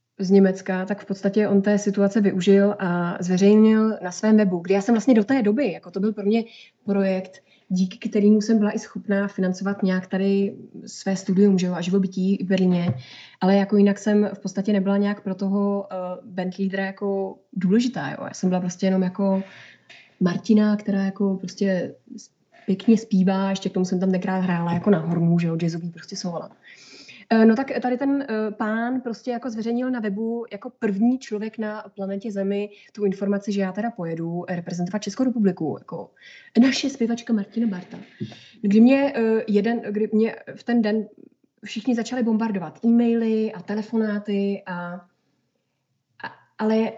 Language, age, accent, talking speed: Czech, 20-39, native, 170 wpm